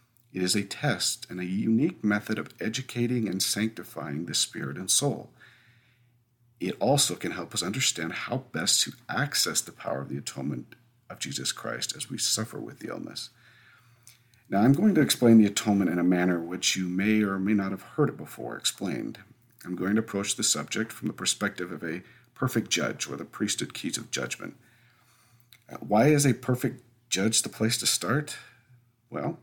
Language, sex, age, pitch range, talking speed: English, male, 50-69, 100-120 Hz, 185 wpm